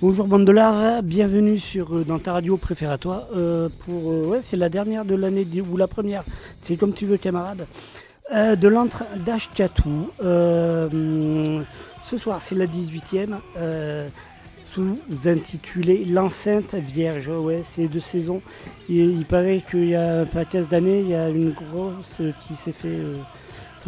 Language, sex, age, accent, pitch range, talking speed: French, male, 40-59, French, 165-200 Hz, 160 wpm